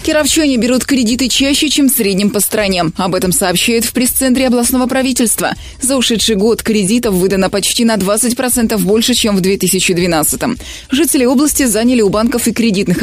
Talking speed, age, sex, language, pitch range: 155 wpm, 20-39, female, Russian, 195-245 Hz